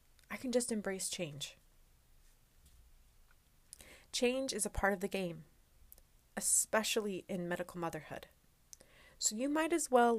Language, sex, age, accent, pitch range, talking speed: English, female, 30-49, American, 155-235 Hz, 125 wpm